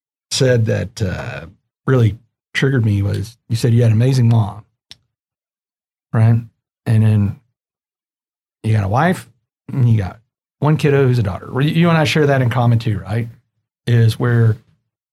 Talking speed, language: 160 wpm, English